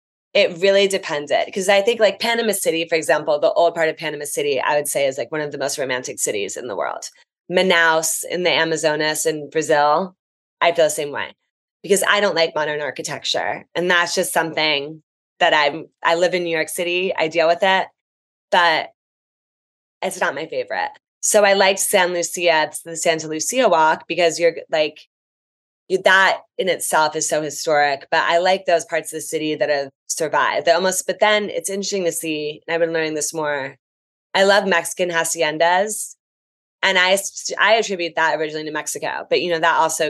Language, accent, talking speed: English, American, 190 wpm